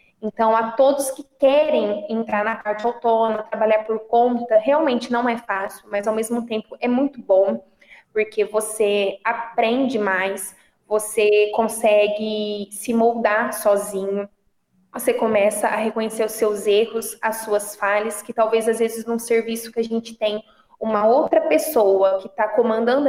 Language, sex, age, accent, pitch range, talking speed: Portuguese, female, 20-39, Brazilian, 210-245 Hz, 150 wpm